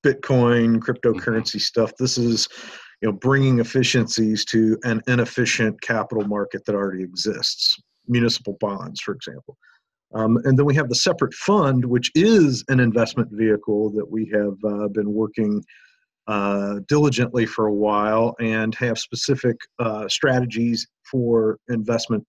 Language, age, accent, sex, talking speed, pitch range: English, 50-69, American, male, 140 wpm, 105-125 Hz